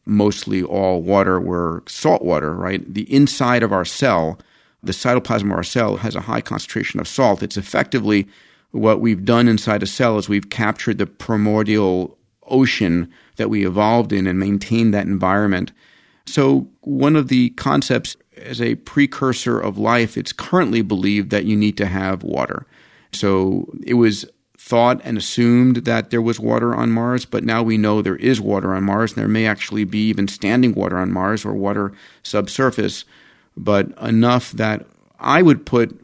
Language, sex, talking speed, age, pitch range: English, male, 170 wpm, 50-69, 95-115 Hz